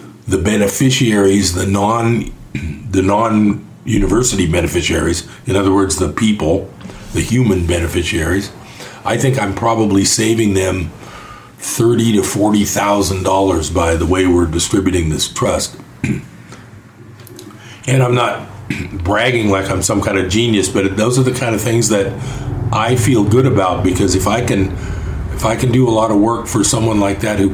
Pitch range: 95-115 Hz